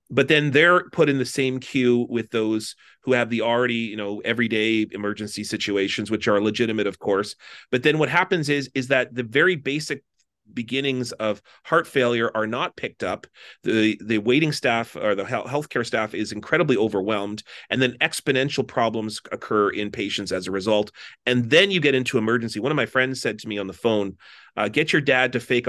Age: 30-49